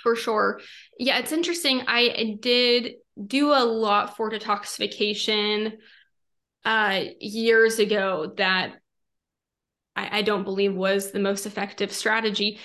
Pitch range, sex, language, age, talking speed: 200-225 Hz, female, English, 20-39, 120 wpm